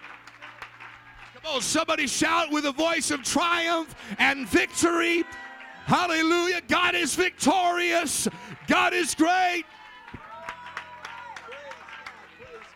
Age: 50-69